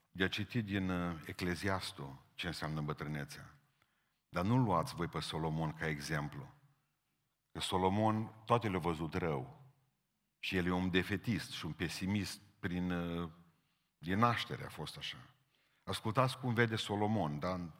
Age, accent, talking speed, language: 50-69, native, 145 wpm, Romanian